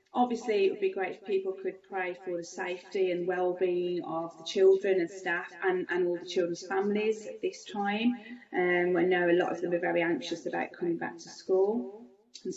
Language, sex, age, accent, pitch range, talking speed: English, female, 30-49, British, 175-230 Hz, 210 wpm